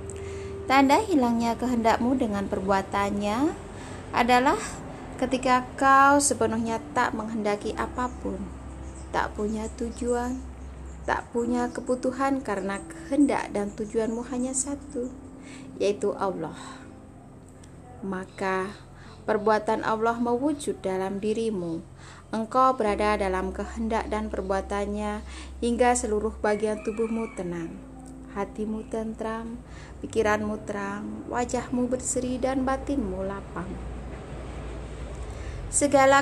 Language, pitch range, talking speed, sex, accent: Indonesian, 195-245 Hz, 90 wpm, female, native